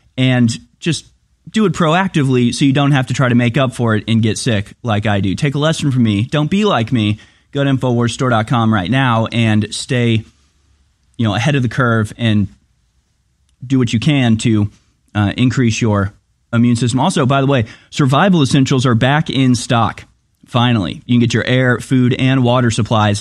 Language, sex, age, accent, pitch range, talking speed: English, male, 30-49, American, 105-135 Hz, 195 wpm